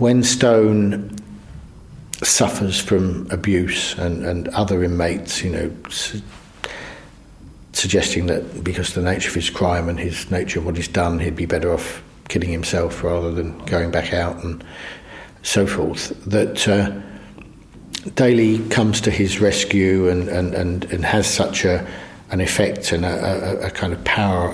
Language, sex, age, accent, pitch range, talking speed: English, male, 60-79, British, 90-100 Hz, 160 wpm